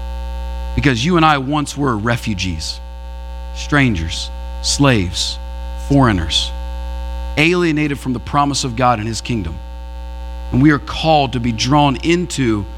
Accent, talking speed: American, 125 wpm